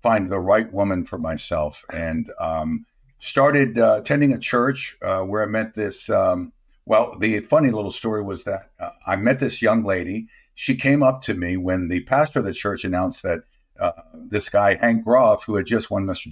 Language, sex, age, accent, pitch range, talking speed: English, male, 50-69, American, 95-130 Hz, 200 wpm